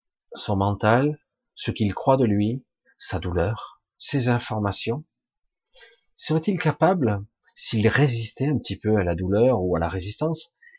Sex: male